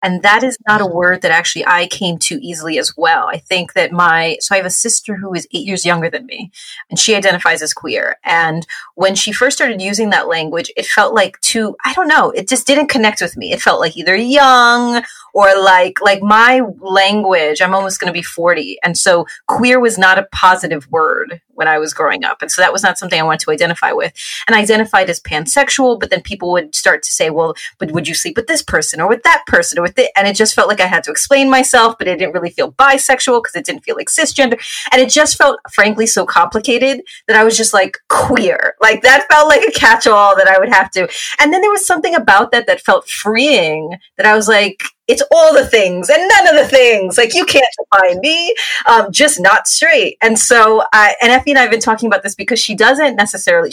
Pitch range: 185-260 Hz